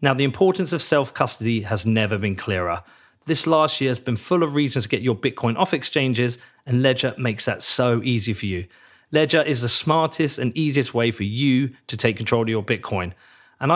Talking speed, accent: 205 wpm, British